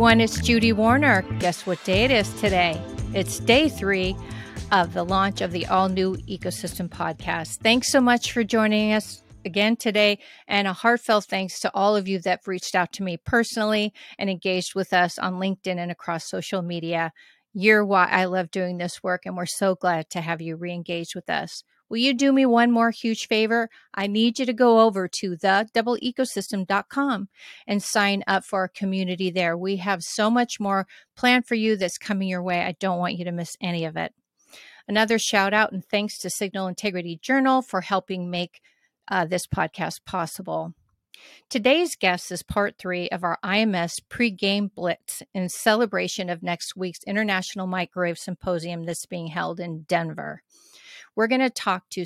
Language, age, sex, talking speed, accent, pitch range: English, 40-59, female, 180 wpm, American, 180-220 Hz